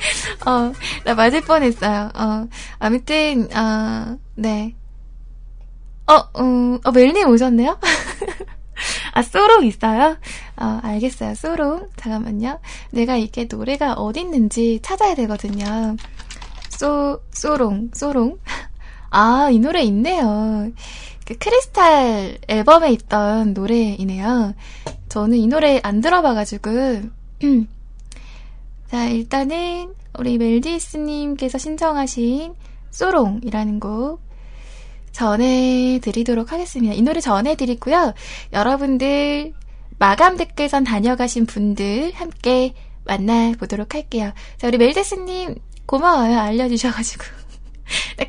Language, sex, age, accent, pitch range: Korean, female, 10-29, native, 220-295 Hz